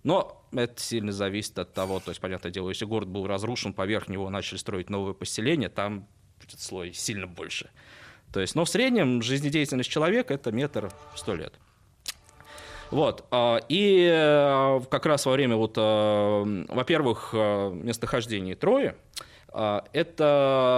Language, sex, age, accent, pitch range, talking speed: Russian, male, 20-39, native, 105-125 Hz, 125 wpm